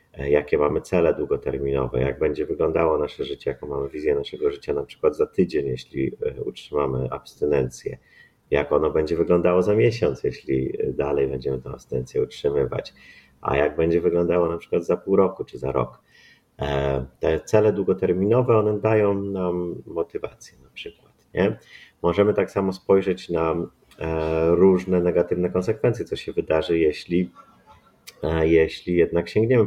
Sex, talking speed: male, 140 wpm